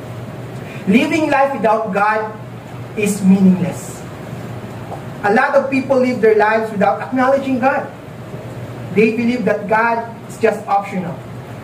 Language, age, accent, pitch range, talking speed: English, 20-39, Filipino, 200-255 Hz, 120 wpm